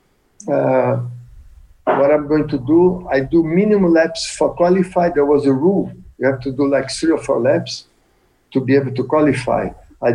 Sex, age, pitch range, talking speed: male, 60-79, 135-170 Hz, 185 wpm